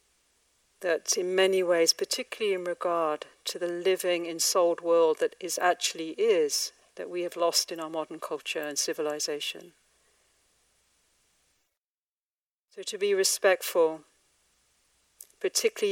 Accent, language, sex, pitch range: British, English, female, 165-255 Hz